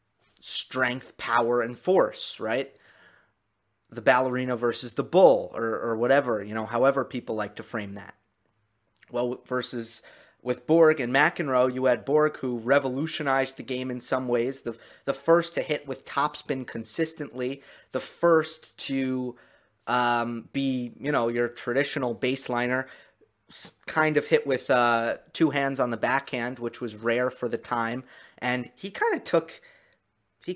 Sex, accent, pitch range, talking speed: male, American, 120-140 Hz, 150 wpm